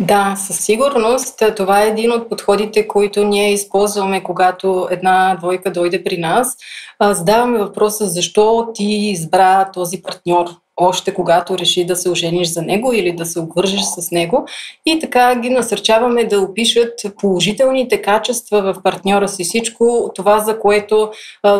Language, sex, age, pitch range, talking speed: Bulgarian, female, 30-49, 195-220 Hz, 155 wpm